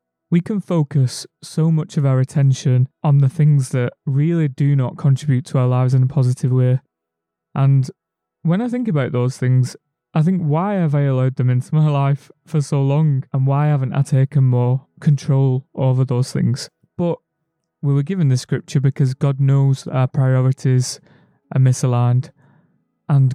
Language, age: English, 30-49